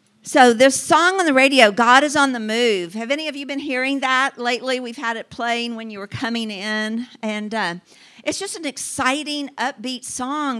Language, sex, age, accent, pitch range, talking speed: English, female, 50-69, American, 205-265 Hz, 205 wpm